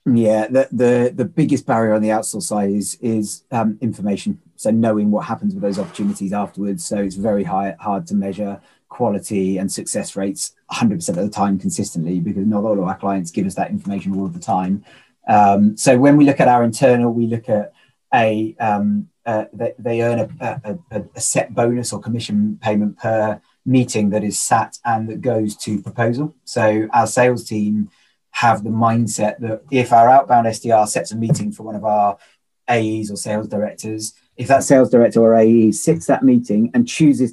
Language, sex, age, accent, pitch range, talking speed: English, male, 30-49, British, 105-125 Hz, 195 wpm